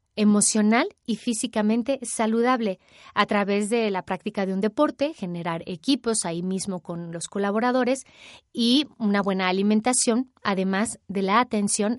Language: Spanish